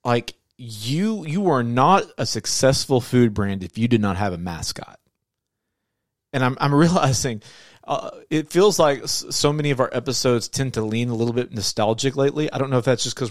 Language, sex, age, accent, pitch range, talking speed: English, male, 30-49, American, 110-135 Hz, 200 wpm